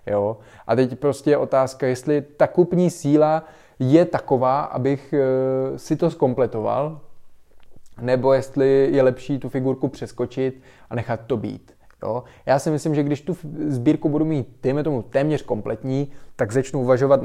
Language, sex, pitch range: Czech, male, 120-135 Hz